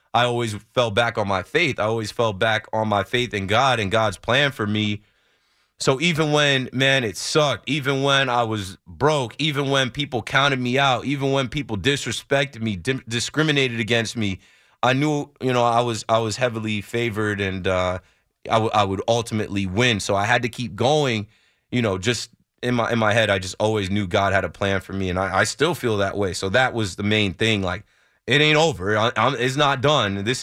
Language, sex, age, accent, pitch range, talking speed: English, male, 30-49, American, 105-130 Hz, 220 wpm